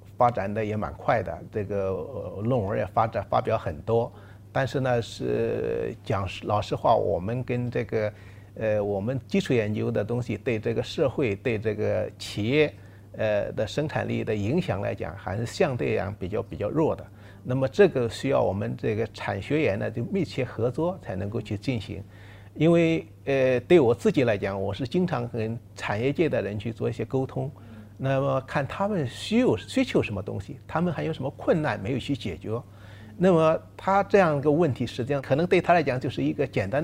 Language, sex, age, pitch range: Chinese, male, 50-69, 105-150 Hz